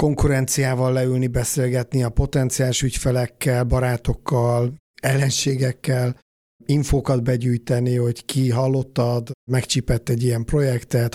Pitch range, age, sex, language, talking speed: 125-140 Hz, 50-69, male, Hungarian, 90 wpm